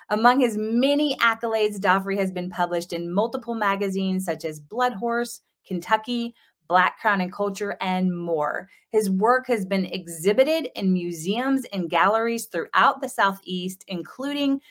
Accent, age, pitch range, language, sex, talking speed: American, 30-49, 180-235 Hz, English, female, 145 wpm